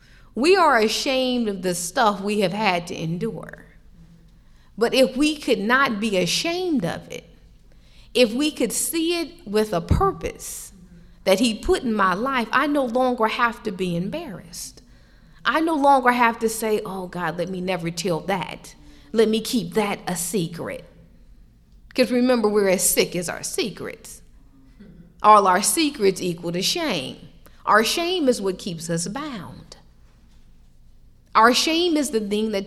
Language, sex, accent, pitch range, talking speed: English, female, American, 170-245 Hz, 160 wpm